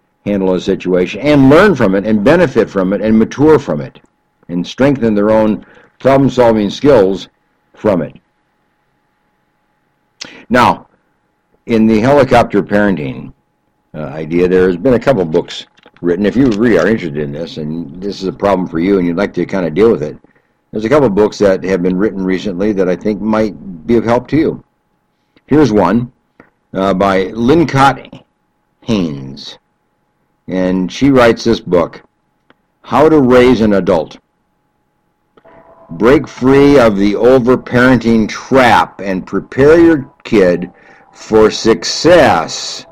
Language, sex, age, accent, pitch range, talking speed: English, male, 60-79, American, 95-130 Hz, 150 wpm